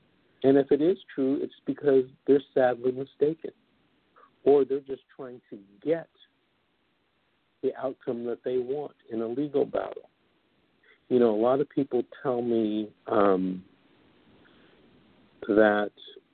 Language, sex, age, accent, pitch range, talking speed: English, male, 50-69, American, 105-135 Hz, 130 wpm